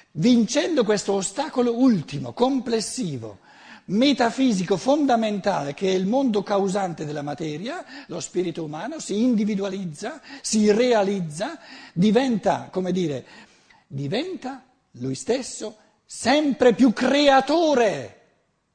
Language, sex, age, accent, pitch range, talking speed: Italian, male, 60-79, native, 175-255 Hz, 95 wpm